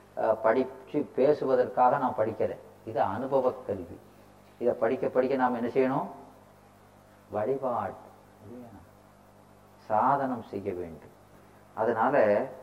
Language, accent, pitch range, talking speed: Tamil, native, 105-130 Hz, 85 wpm